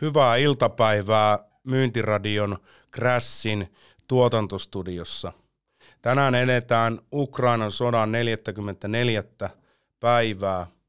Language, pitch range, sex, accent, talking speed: Finnish, 100-120 Hz, male, native, 60 wpm